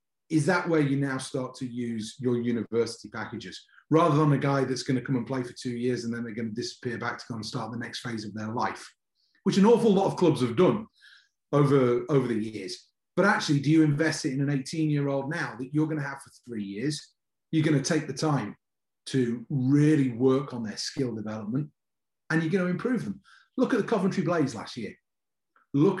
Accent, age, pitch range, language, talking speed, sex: British, 30-49, 120-155 Hz, English, 230 wpm, male